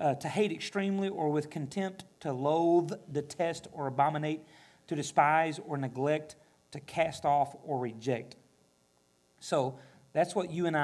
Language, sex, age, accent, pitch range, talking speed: English, male, 40-59, American, 125-155 Hz, 145 wpm